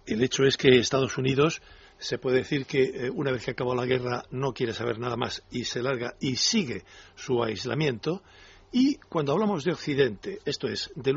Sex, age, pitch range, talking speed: male, 60-79, 125-165 Hz, 200 wpm